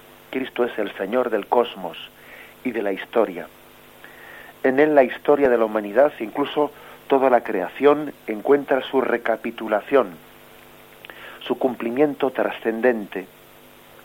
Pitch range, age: 110-135 Hz, 40-59